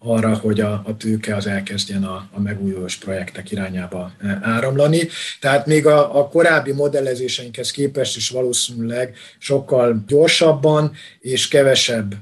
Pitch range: 110-145 Hz